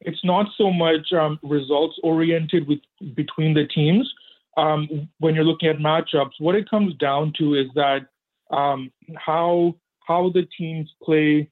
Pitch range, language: 145-170 Hz, English